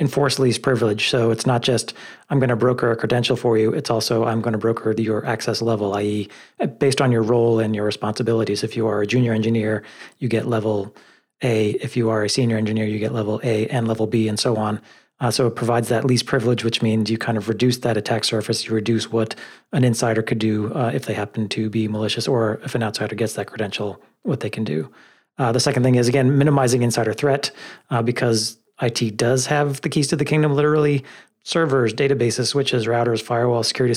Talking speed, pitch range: 220 wpm, 110-130 Hz